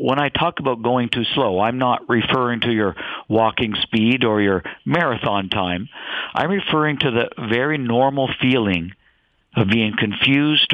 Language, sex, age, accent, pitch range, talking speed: English, male, 50-69, American, 105-130 Hz, 155 wpm